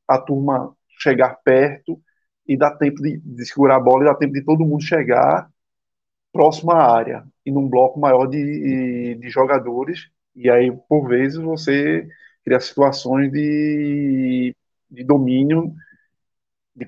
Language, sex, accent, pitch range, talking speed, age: Portuguese, male, Brazilian, 130-155 Hz, 140 wpm, 20-39